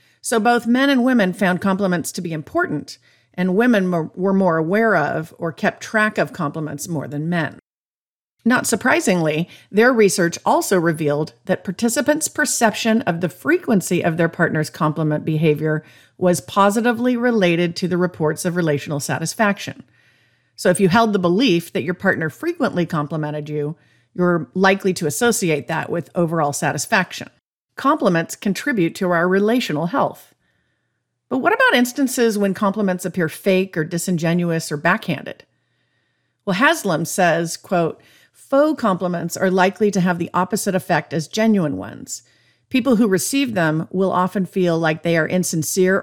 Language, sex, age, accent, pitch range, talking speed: English, female, 50-69, American, 165-215 Hz, 150 wpm